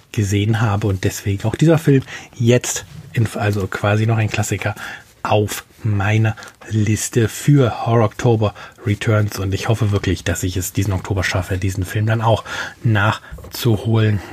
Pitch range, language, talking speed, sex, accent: 100-115 Hz, German, 145 wpm, male, German